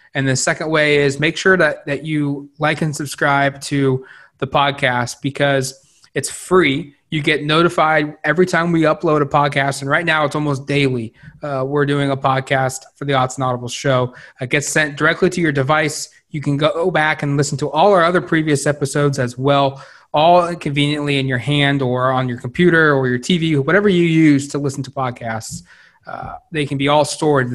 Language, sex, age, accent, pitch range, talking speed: English, male, 20-39, American, 135-165 Hz, 200 wpm